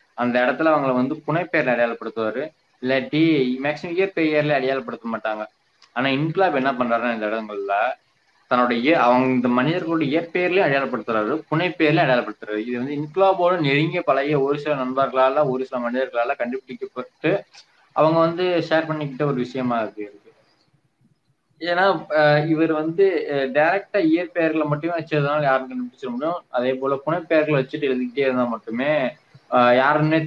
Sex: male